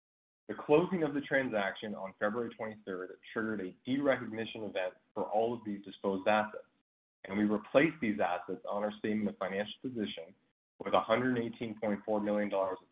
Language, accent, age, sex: English, American, 30-49, male